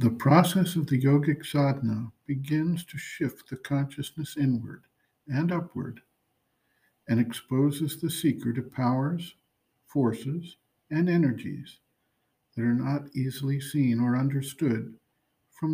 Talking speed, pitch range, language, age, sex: 120 wpm, 125-155 Hz, English, 60-79, male